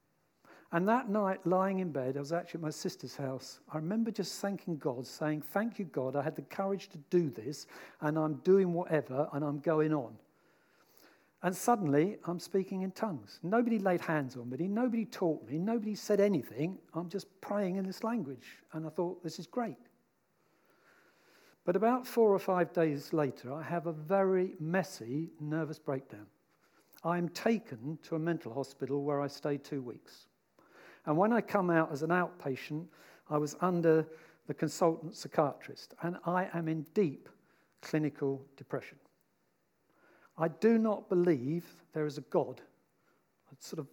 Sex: male